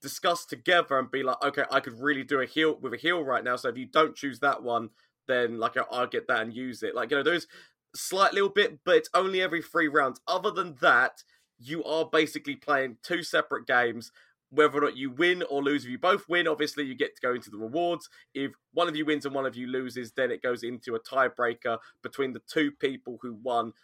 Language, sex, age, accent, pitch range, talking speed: English, male, 20-39, British, 130-175 Hz, 245 wpm